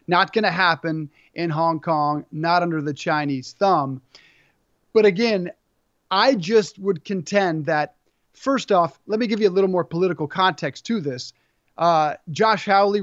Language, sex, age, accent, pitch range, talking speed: English, male, 30-49, American, 160-205 Hz, 160 wpm